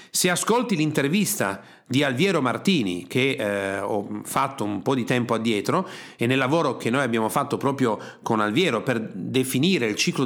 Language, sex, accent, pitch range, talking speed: Italian, male, native, 130-180 Hz, 170 wpm